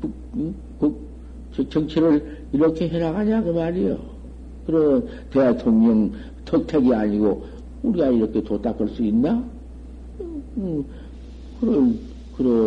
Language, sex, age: Korean, male, 60-79